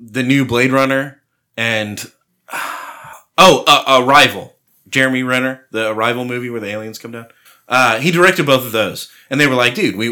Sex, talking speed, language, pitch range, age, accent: male, 180 wpm, English, 110-140 Hz, 30-49, American